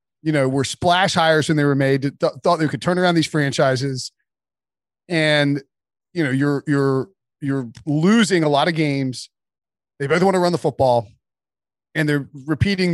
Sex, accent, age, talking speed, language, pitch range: male, American, 30-49, 175 wpm, English, 140-185 Hz